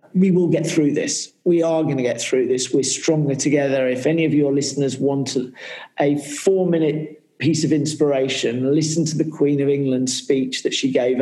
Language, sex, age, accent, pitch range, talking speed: English, male, 40-59, British, 130-150 Hz, 195 wpm